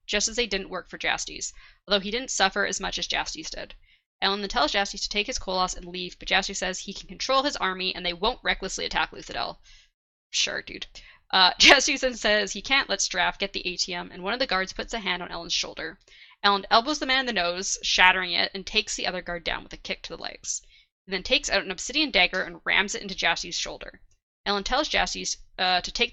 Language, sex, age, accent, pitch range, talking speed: English, female, 10-29, American, 185-225 Hz, 240 wpm